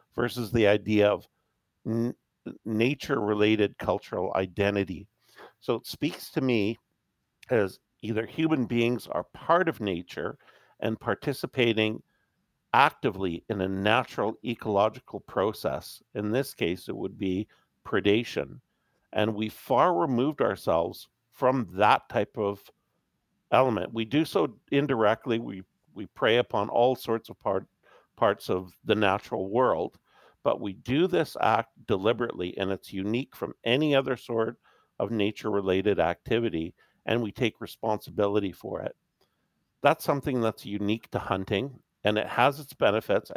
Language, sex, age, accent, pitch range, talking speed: English, male, 50-69, American, 100-120 Hz, 135 wpm